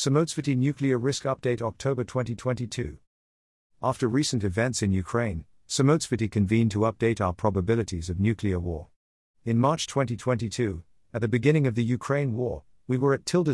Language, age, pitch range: English, 50-69, 95-130 Hz